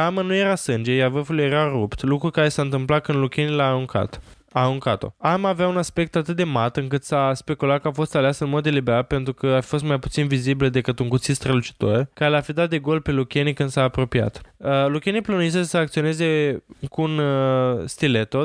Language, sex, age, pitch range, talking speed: Romanian, male, 20-39, 135-160 Hz, 210 wpm